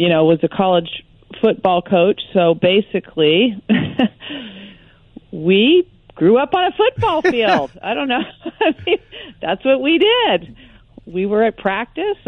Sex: female